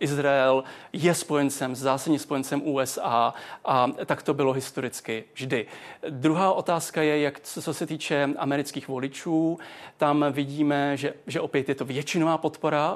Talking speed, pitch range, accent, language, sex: 140 wpm, 140-155 Hz, native, Czech, male